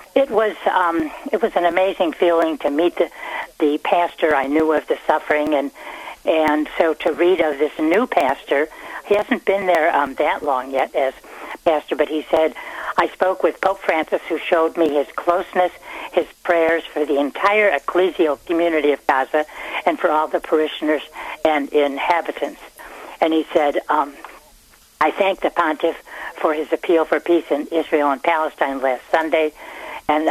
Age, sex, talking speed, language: 60-79, female, 170 wpm, English